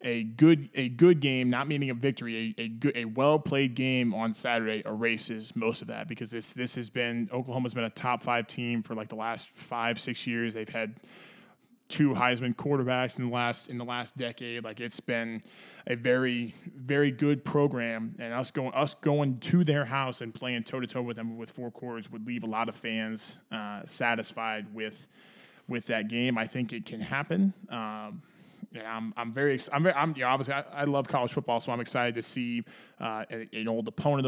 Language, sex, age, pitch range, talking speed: English, male, 20-39, 115-135 Hz, 205 wpm